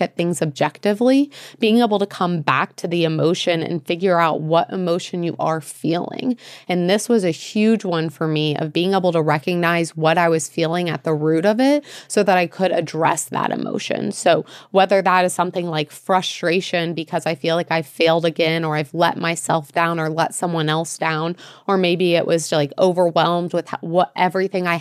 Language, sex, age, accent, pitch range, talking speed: English, female, 30-49, American, 160-180 Hz, 200 wpm